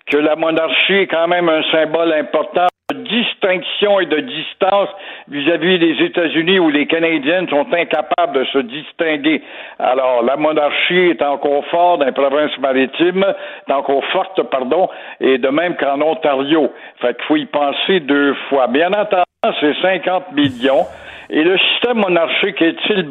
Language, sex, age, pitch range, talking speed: French, male, 60-79, 140-185 Hz, 155 wpm